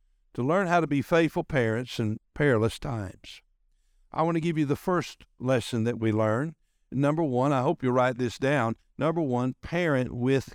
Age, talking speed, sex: 60-79, 190 wpm, male